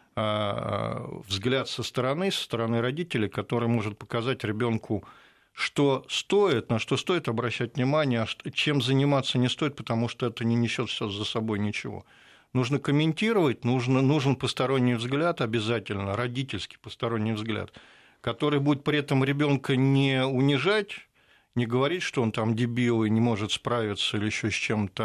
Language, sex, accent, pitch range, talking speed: Russian, male, native, 110-135 Hz, 145 wpm